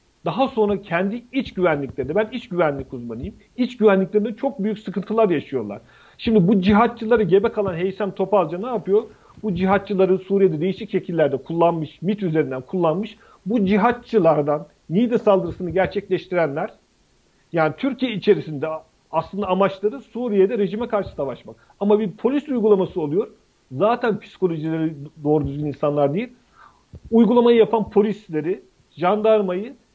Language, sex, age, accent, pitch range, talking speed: Turkish, male, 50-69, native, 175-225 Hz, 125 wpm